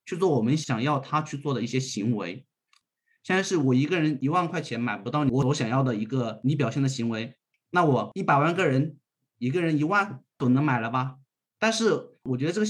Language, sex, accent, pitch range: Chinese, male, native, 125-160 Hz